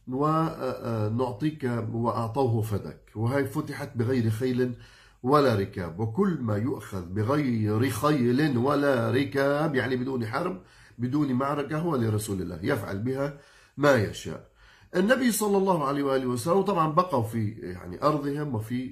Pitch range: 105-140 Hz